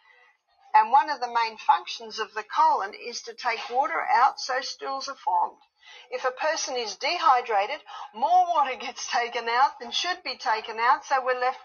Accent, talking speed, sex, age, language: Australian, 185 wpm, female, 50-69, English